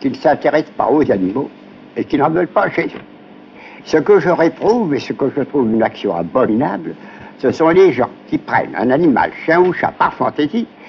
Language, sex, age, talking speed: French, male, 60-79, 210 wpm